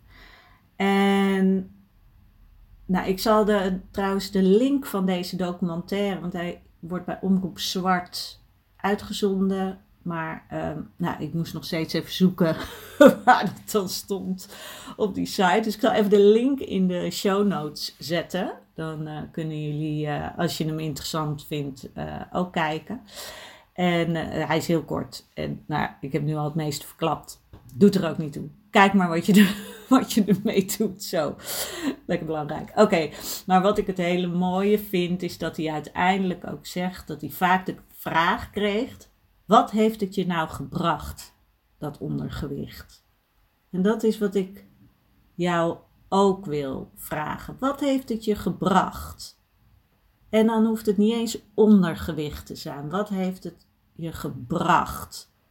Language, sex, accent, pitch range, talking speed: Dutch, female, Dutch, 155-205 Hz, 155 wpm